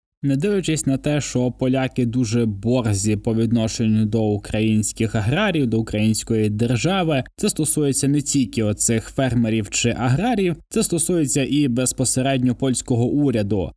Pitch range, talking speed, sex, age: 115-140 Hz, 130 wpm, male, 20-39